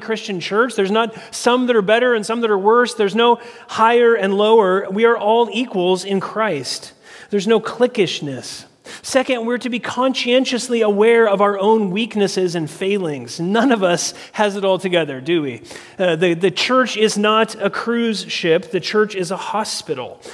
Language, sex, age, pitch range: English, male, 30-49, 180-230 Hz